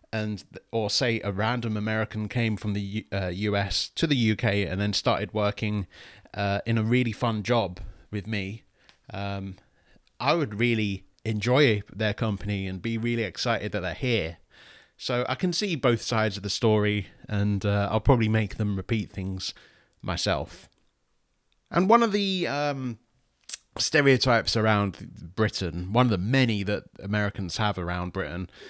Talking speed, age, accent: 155 wpm, 30-49, British